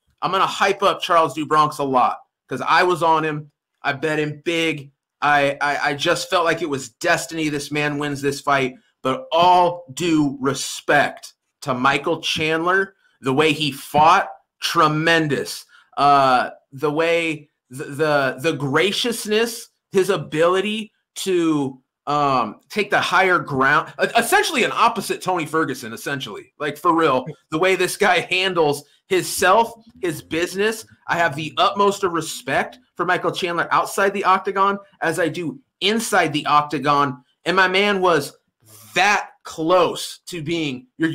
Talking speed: 150 wpm